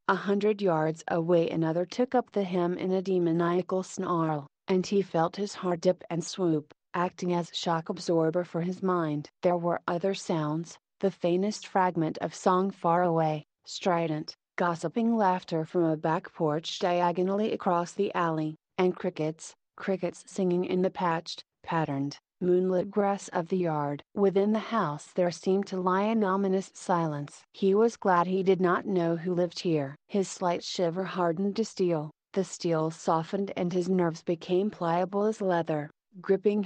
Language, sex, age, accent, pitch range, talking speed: English, female, 30-49, American, 165-190 Hz, 165 wpm